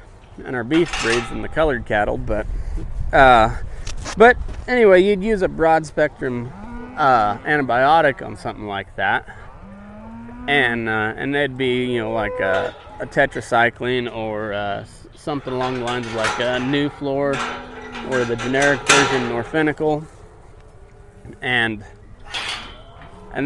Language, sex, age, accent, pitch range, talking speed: English, male, 30-49, American, 110-160 Hz, 135 wpm